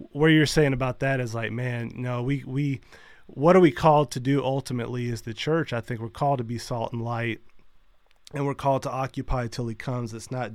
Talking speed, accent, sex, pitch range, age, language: 240 wpm, American, male, 120-145 Hz, 30-49, English